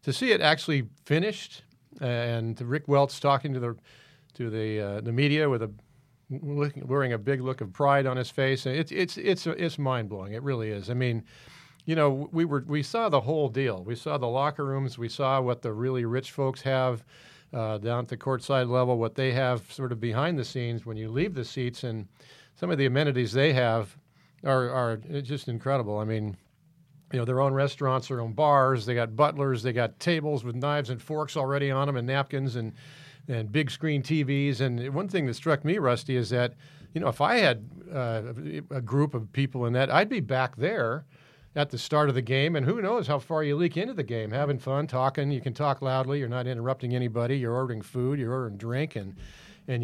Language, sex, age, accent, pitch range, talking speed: English, male, 50-69, American, 125-145 Hz, 220 wpm